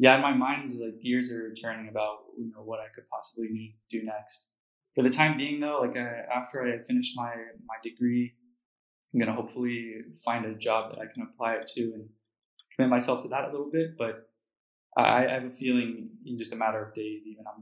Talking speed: 225 wpm